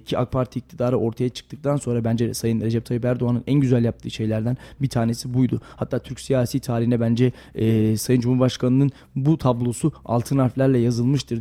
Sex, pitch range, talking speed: male, 115-135 Hz, 170 wpm